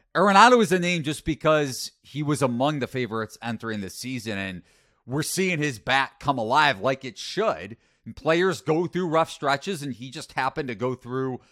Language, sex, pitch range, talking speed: English, male, 115-150 Hz, 190 wpm